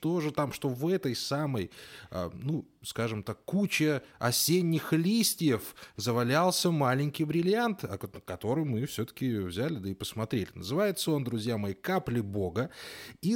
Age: 20-39